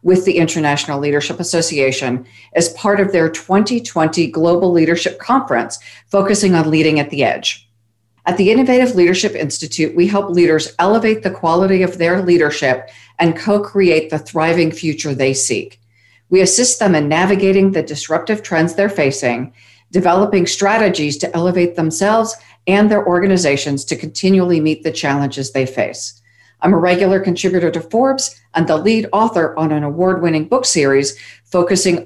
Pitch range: 150-190 Hz